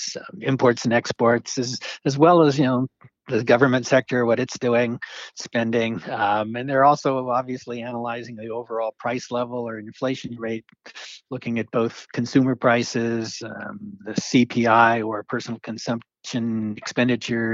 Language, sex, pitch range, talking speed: English, male, 115-130 Hz, 145 wpm